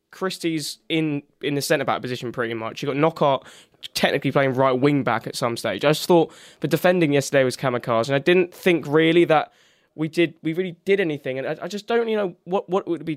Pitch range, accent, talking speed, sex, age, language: 135-170 Hz, British, 235 wpm, male, 10-29, English